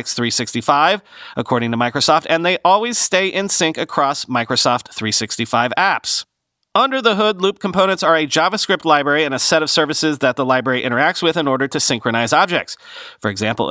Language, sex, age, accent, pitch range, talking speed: English, male, 30-49, American, 130-180 Hz, 175 wpm